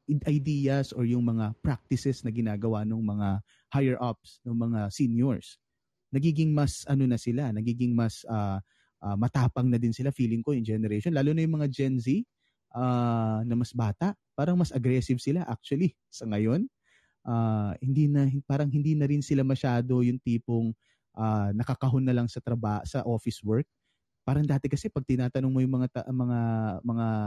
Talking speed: 175 wpm